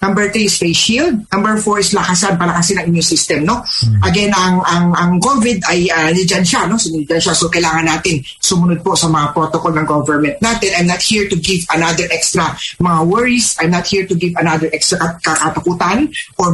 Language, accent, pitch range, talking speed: English, Filipino, 155-180 Hz, 195 wpm